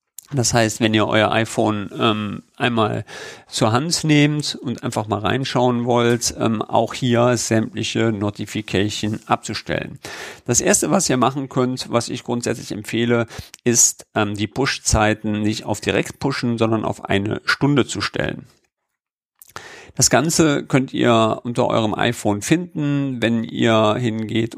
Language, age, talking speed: German, 50-69, 140 wpm